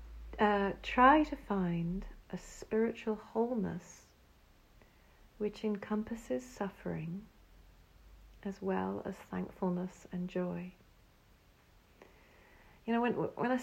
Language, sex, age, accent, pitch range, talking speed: English, female, 40-59, British, 185-240 Hz, 95 wpm